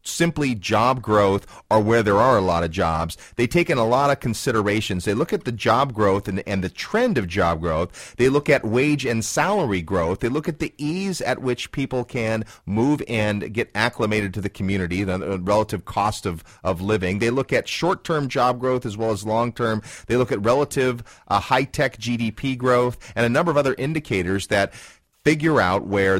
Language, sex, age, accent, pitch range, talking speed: English, male, 30-49, American, 95-125 Hz, 200 wpm